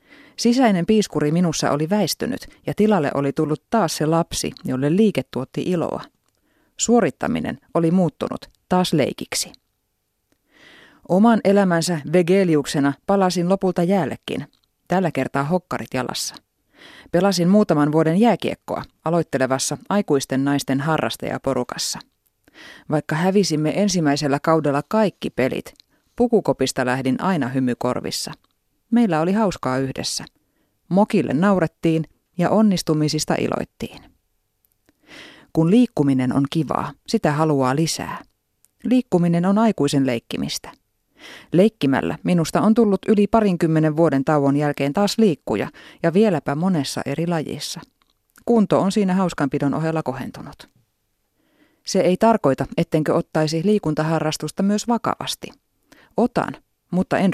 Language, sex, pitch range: Finnish, female, 145-200 Hz